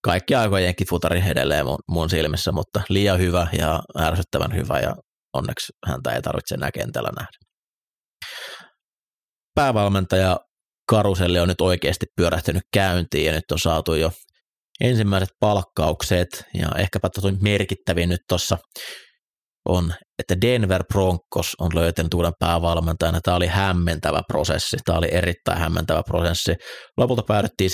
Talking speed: 130 wpm